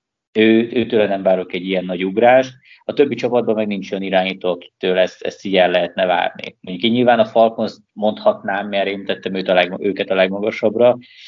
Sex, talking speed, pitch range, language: male, 175 wpm, 95-110 Hz, Hungarian